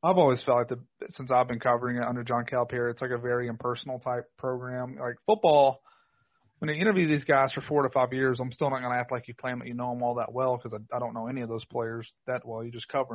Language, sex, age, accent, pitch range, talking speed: English, male, 30-49, American, 120-140 Hz, 285 wpm